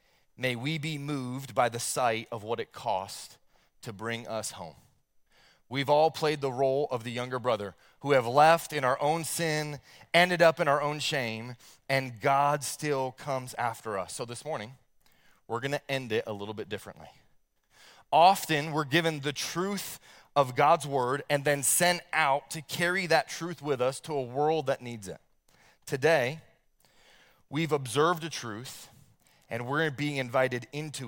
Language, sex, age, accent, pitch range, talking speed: English, male, 30-49, American, 115-150 Hz, 170 wpm